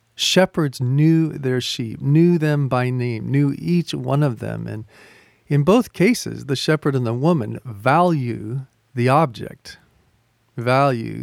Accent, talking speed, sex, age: American, 140 wpm, male, 40-59